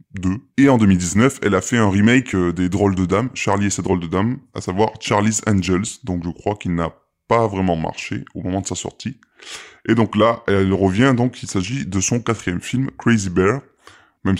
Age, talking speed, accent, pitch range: 20-39, 210 wpm, French, 95-115 Hz